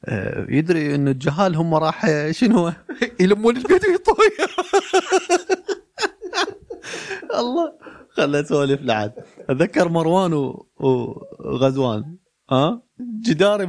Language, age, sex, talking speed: Arabic, 30-49, male, 90 wpm